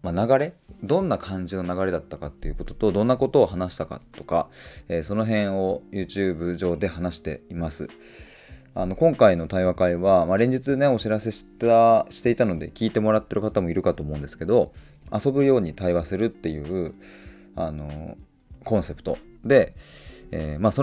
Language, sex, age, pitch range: Japanese, male, 20-39, 80-115 Hz